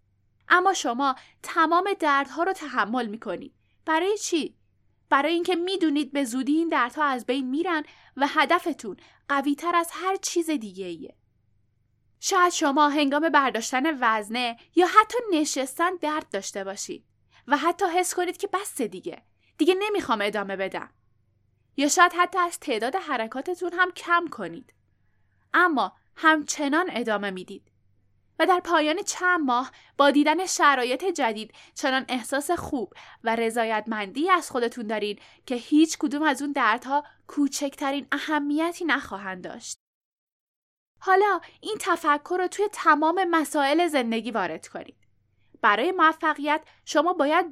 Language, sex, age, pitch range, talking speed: Persian, female, 10-29, 225-340 Hz, 130 wpm